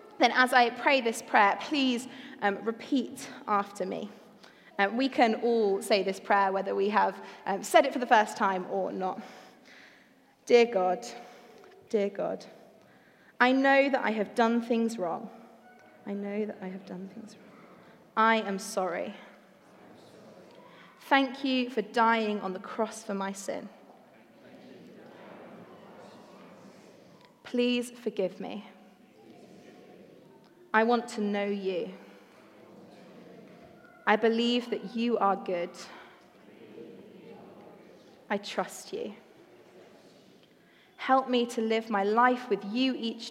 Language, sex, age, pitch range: English, female, 20-39, 200-245 Hz